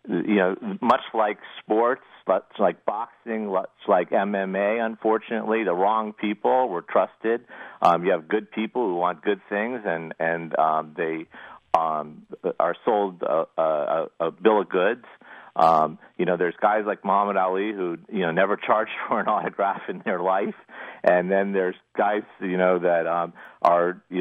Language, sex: English, male